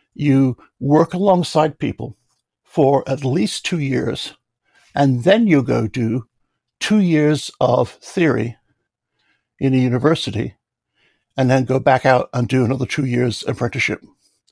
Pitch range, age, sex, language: 125-165 Hz, 60-79, male, English